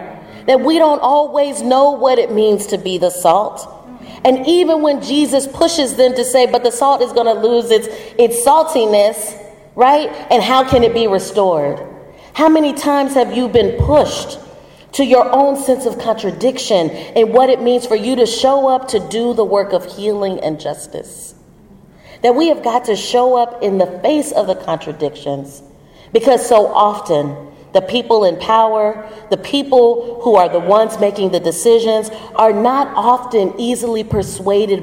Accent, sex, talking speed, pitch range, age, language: American, female, 170 wpm, 190-245 Hz, 30-49, English